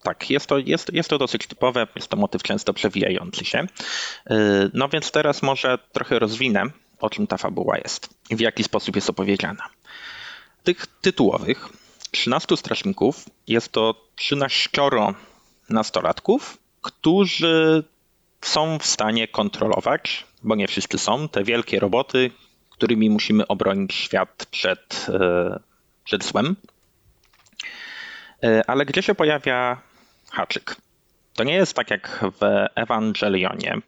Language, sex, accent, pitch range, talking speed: Polish, male, native, 110-150 Hz, 120 wpm